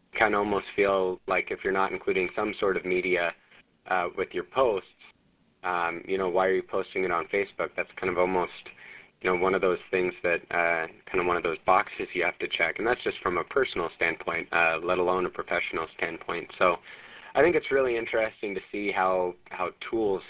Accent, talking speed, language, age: American, 215 wpm, English, 30-49